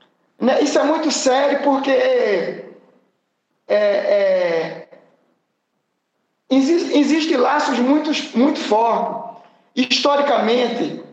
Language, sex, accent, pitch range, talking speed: Portuguese, male, Brazilian, 230-290 Hz, 60 wpm